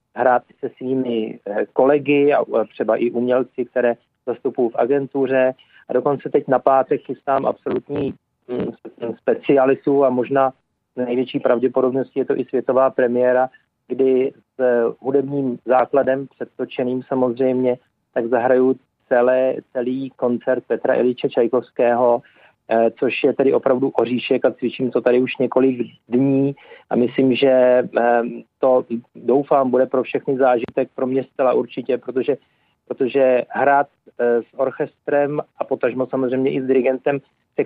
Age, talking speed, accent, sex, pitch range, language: 40-59, 125 wpm, native, male, 125-135 Hz, Czech